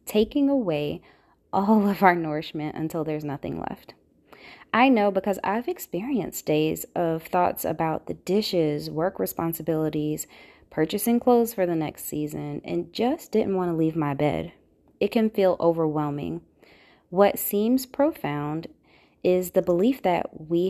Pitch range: 160-200 Hz